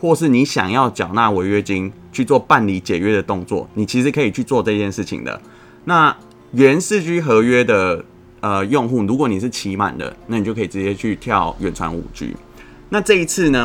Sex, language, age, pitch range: male, Chinese, 20-39, 100-130 Hz